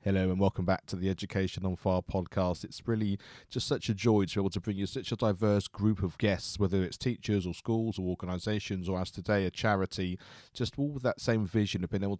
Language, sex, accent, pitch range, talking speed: English, male, British, 95-115 Hz, 240 wpm